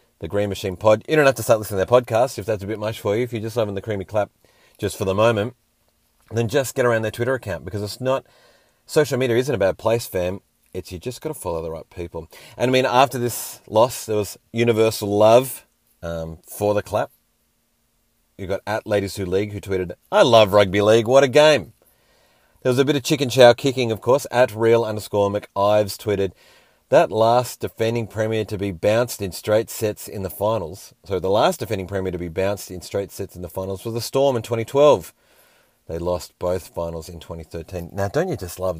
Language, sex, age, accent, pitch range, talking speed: English, male, 30-49, Australian, 95-125 Hz, 225 wpm